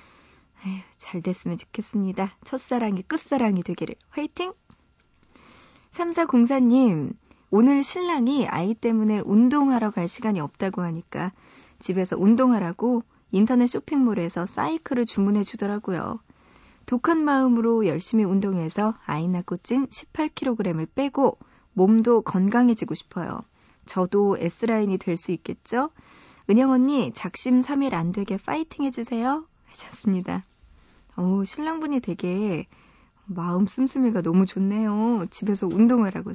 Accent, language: native, Korean